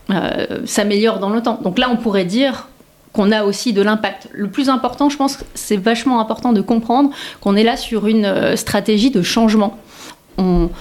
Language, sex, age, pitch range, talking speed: French, female, 30-49, 195-235 Hz, 195 wpm